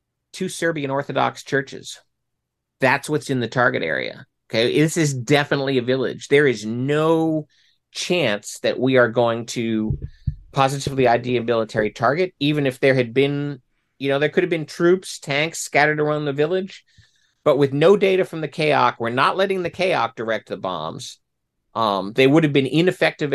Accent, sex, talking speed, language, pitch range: American, male, 175 wpm, English, 115-145 Hz